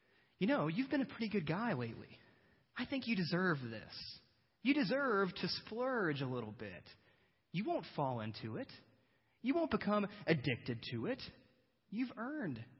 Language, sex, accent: English, male, American